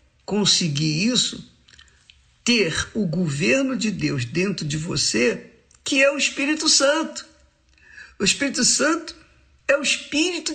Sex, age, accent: male, 50-69, Brazilian